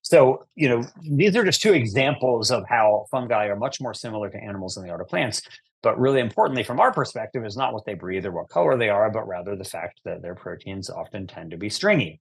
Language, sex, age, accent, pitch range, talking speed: English, male, 30-49, American, 100-130 Hz, 245 wpm